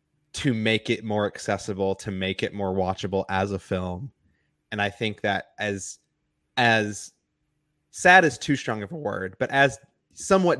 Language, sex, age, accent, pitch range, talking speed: English, male, 20-39, American, 95-115 Hz, 165 wpm